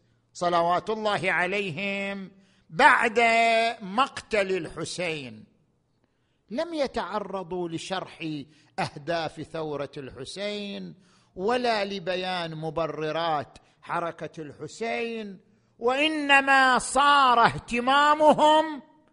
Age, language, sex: 50-69, Arabic, male